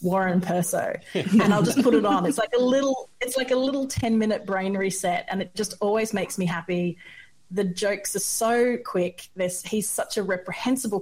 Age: 30-49